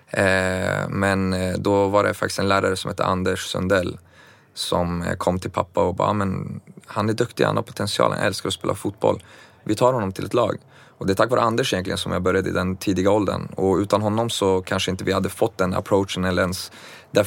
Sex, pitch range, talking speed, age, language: male, 95-100 Hz, 220 wpm, 30-49, English